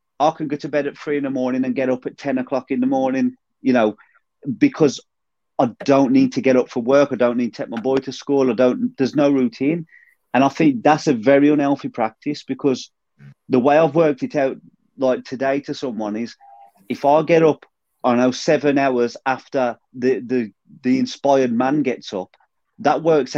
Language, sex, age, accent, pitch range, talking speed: English, male, 30-49, British, 125-155 Hz, 210 wpm